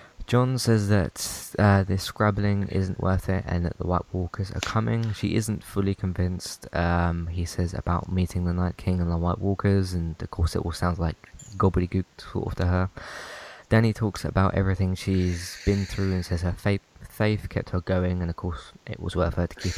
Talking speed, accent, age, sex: 205 wpm, British, 20-39, male